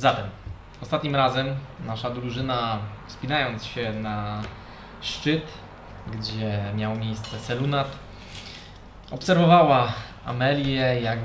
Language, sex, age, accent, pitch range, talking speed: Polish, male, 20-39, native, 110-135 Hz, 85 wpm